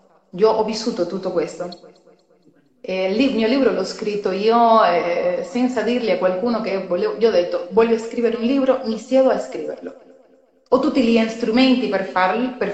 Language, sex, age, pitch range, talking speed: Italian, female, 30-49, 190-250 Hz, 180 wpm